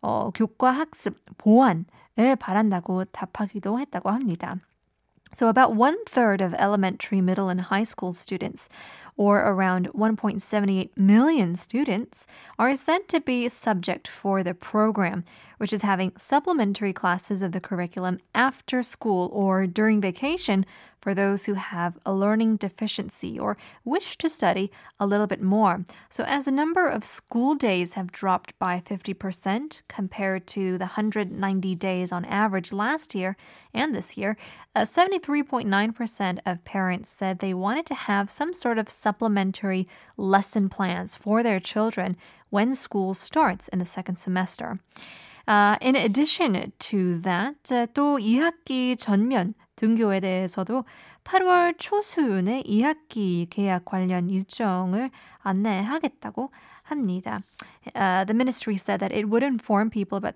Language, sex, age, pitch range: Korean, female, 20-39, 190-240 Hz